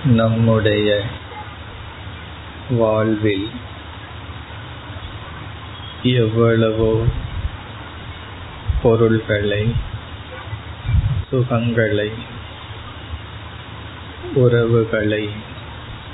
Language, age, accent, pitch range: Tamil, 50-69, native, 100-110 Hz